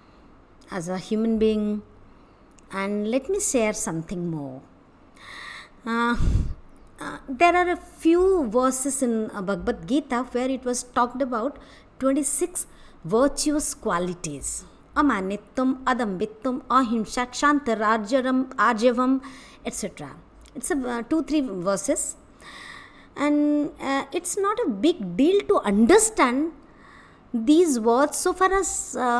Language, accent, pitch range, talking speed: English, Indian, 220-295 Hz, 105 wpm